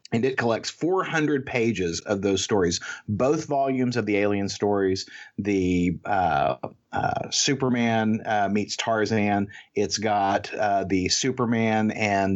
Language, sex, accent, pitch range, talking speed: English, male, American, 105-130 Hz, 130 wpm